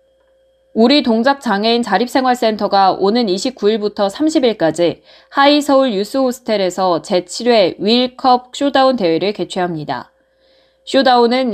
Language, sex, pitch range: Korean, female, 195-260 Hz